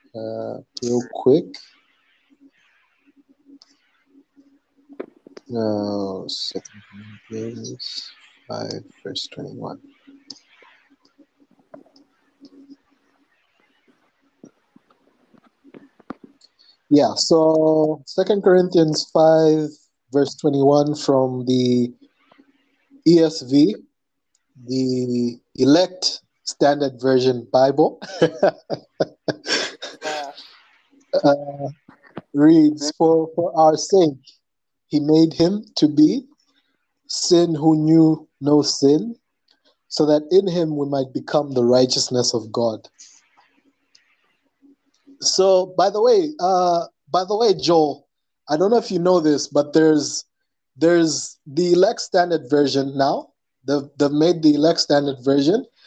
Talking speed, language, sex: 90 wpm, English, male